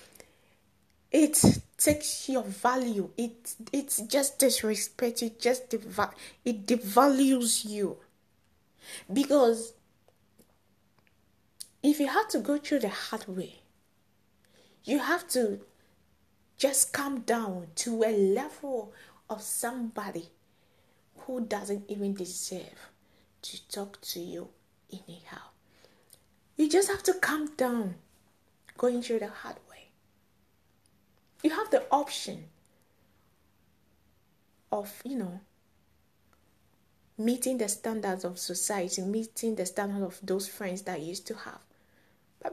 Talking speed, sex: 105 wpm, female